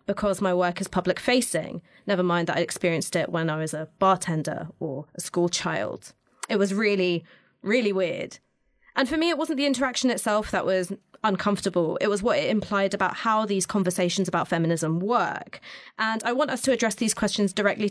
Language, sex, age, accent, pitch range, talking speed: English, female, 20-39, British, 185-260 Hz, 195 wpm